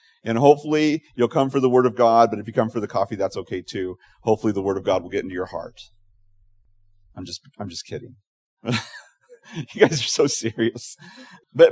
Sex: male